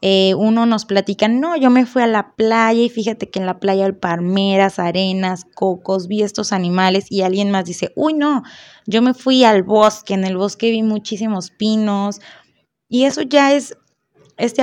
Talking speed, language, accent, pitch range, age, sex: 185 wpm, Spanish, Mexican, 185-220 Hz, 20-39, female